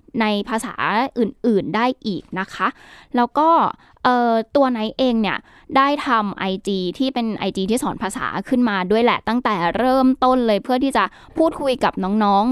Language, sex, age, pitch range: Thai, female, 10-29, 190-245 Hz